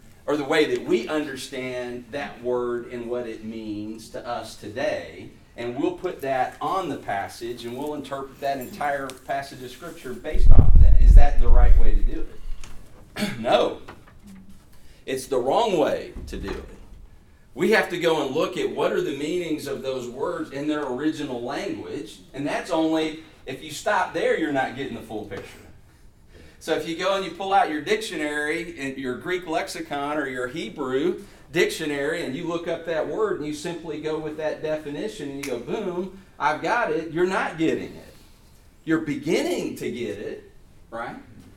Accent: American